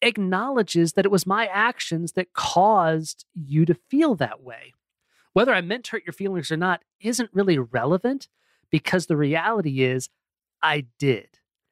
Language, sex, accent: English, male, American